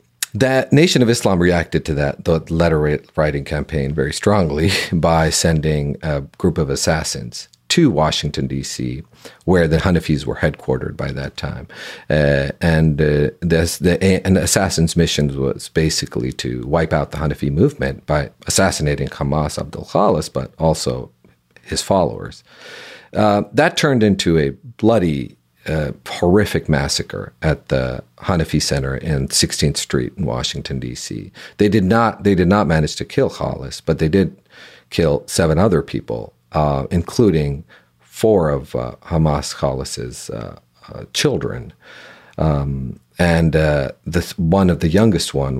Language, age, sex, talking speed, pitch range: English, 40-59, male, 145 wpm, 70-85 Hz